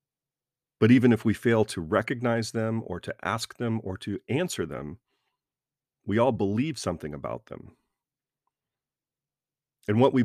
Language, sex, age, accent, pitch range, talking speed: English, male, 40-59, American, 95-130 Hz, 145 wpm